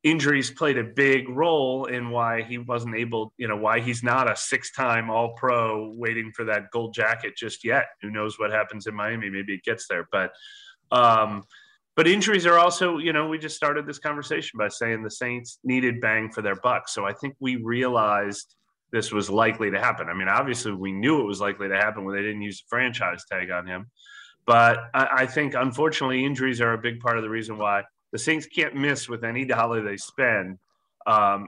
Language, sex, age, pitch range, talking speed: English, male, 30-49, 105-130 Hz, 210 wpm